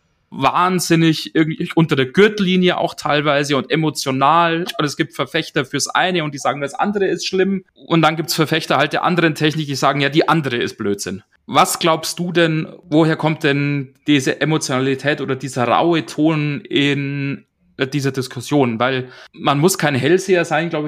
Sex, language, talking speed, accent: male, German, 175 wpm, German